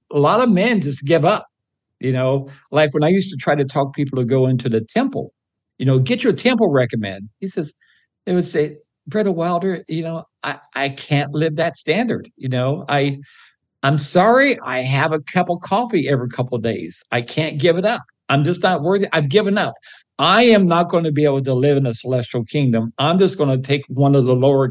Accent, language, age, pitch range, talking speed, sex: American, English, 60-79, 135-175 Hz, 225 wpm, male